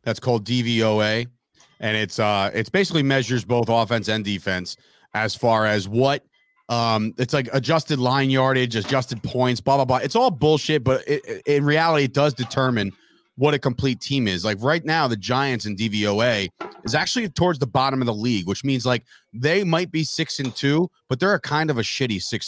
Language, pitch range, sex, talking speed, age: English, 115-150 Hz, male, 205 wpm, 30-49